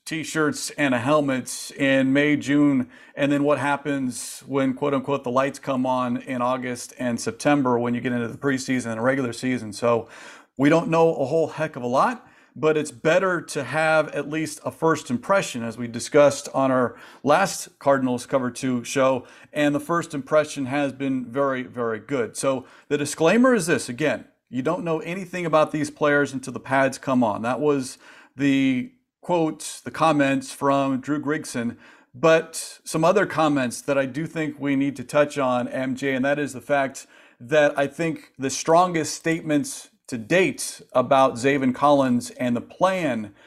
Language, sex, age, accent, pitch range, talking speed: English, male, 40-59, American, 130-155 Hz, 180 wpm